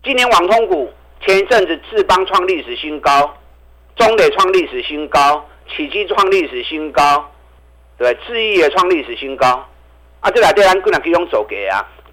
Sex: male